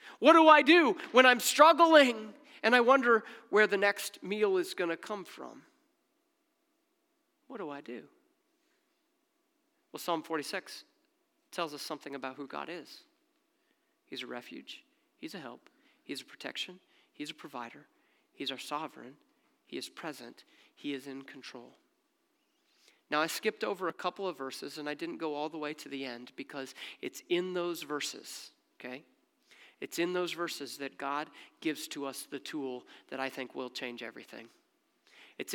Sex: male